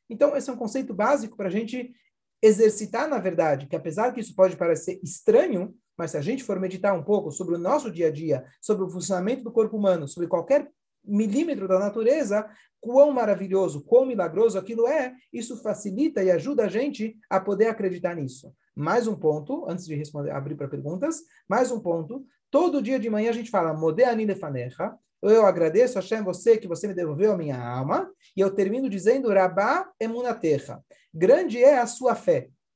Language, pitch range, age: Portuguese, 180-250 Hz, 40-59